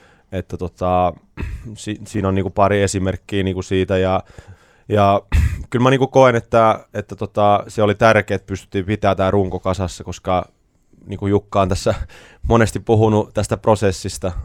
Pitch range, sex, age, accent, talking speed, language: 95-105 Hz, male, 20-39, native, 155 wpm, Finnish